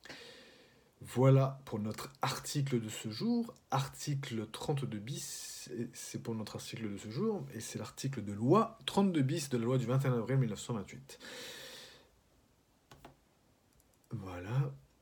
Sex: male